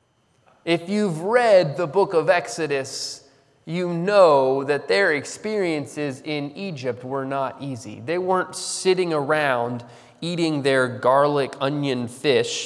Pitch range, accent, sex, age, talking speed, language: 130-180 Hz, American, male, 20-39, 125 wpm, English